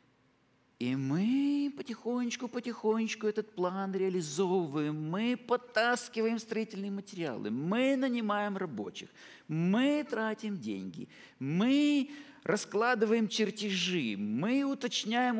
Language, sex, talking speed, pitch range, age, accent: Russian, male, 80 wpm, 205-265 Hz, 50-69, native